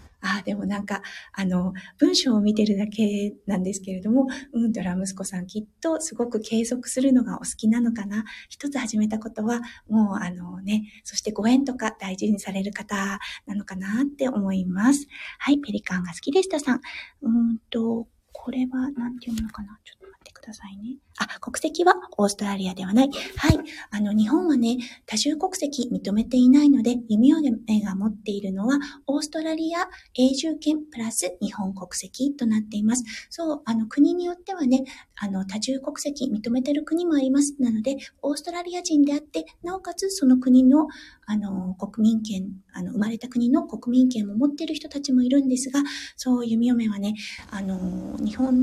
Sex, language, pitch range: female, Japanese, 210-285 Hz